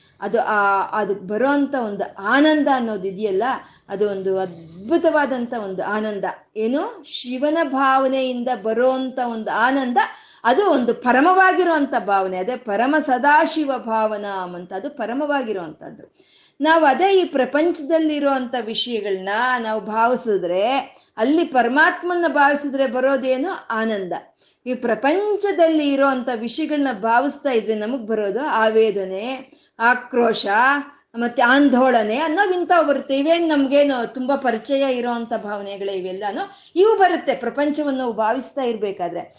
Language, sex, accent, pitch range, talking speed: Kannada, female, native, 220-300 Hz, 105 wpm